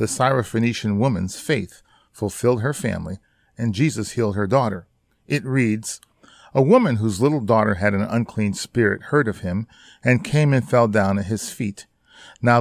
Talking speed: 165 wpm